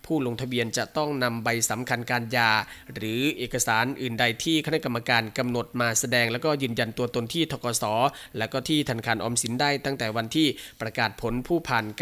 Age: 20-39